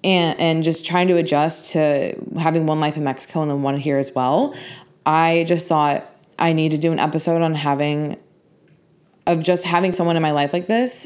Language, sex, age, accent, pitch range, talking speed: English, female, 20-39, American, 155-175 Hz, 205 wpm